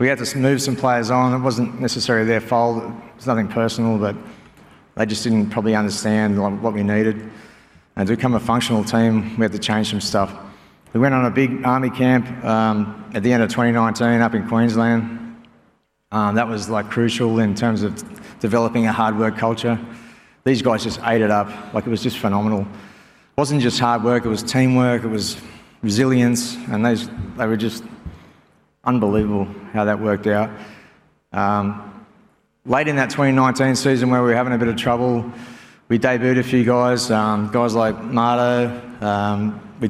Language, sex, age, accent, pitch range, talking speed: English, male, 30-49, Australian, 105-120 Hz, 185 wpm